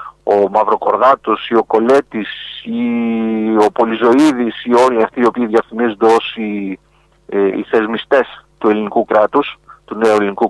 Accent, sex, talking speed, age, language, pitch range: Spanish, male, 120 wpm, 40-59, Greek, 110-125 Hz